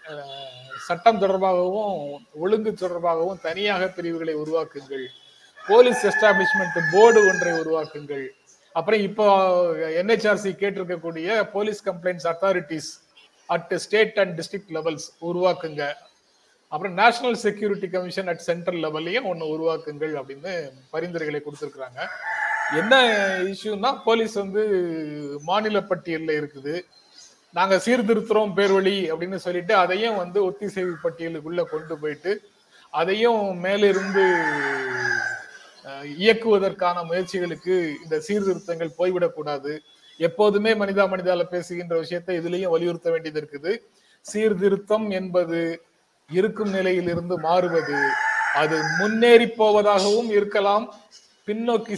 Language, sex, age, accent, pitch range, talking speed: Tamil, male, 30-49, native, 165-205 Hz, 95 wpm